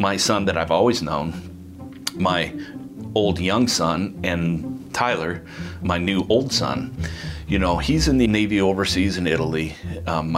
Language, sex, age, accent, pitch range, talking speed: English, male, 40-59, American, 85-100 Hz, 150 wpm